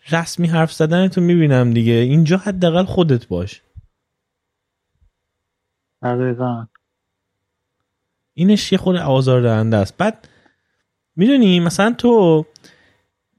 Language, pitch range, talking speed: Persian, 105-155 Hz, 90 wpm